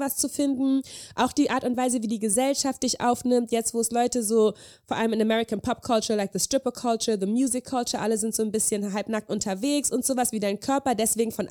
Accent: German